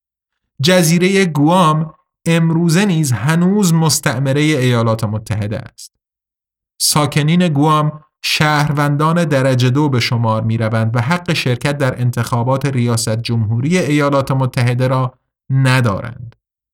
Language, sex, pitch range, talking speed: Persian, male, 120-160 Hz, 105 wpm